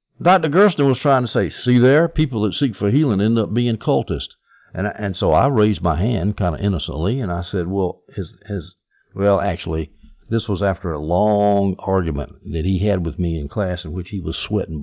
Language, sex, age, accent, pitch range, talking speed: English, male, 60-79, American, 90-130 Hz, 220 wpm